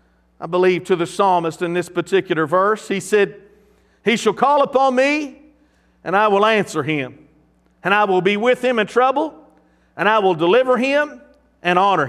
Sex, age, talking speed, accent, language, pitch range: male, 50-69, 180 wpm, American, English, 180-215 Hz